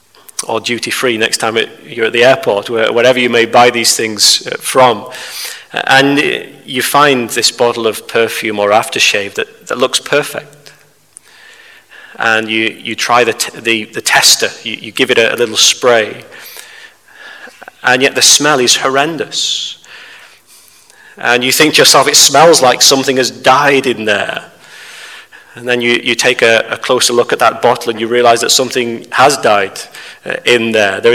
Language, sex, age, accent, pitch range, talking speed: English, male, 30-49, British, 115-130 Hz, 170 wpm